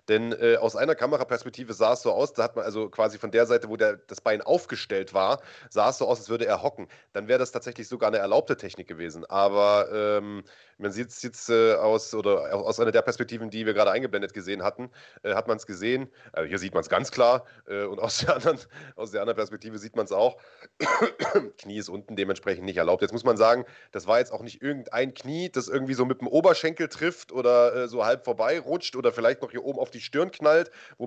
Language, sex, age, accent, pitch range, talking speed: German, male, 30-49, German, 115-160 Hz, 245 wpm